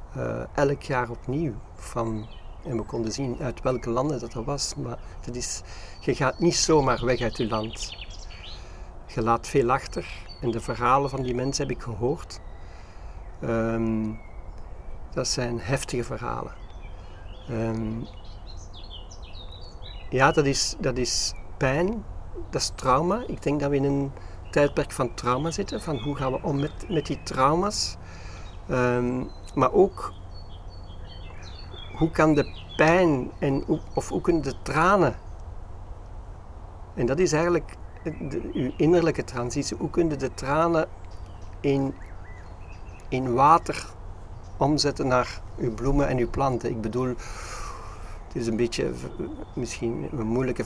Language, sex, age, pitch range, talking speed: Dutch, male, 50-69, 90-130 Hz, 140 wpm